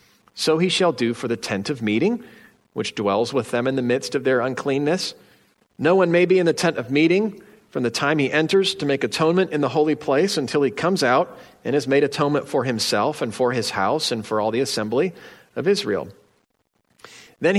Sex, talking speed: male, 210 wpm